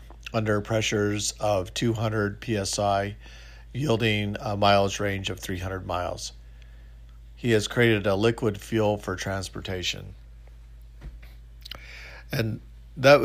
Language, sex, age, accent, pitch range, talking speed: English, male, 50-69, American, 80-105 Hz, 100 wpm